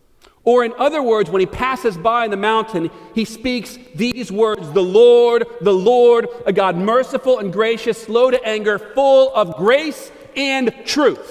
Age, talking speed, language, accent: 40-59, 170 wpm, English, American